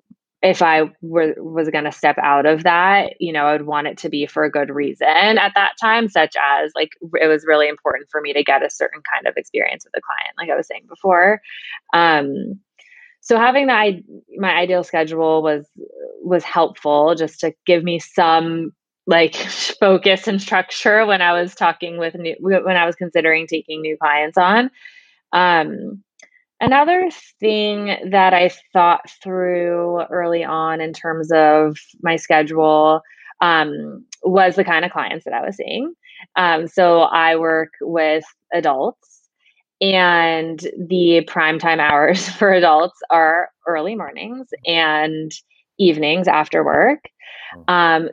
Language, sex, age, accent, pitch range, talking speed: English, female, 20-39, American, 155-195 Hz, 155 wpm